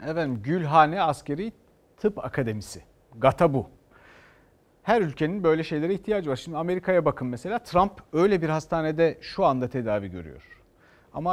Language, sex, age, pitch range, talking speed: Turkish, male, 60-79, 130-195 Hz, 140 wpm